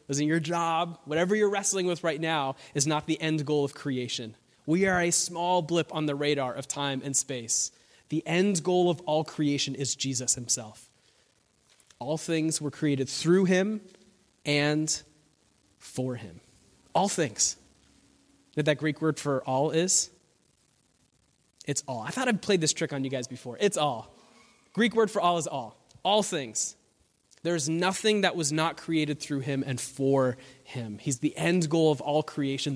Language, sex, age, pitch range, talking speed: English, male, 20-39, 140-205 Hz, 175 wpm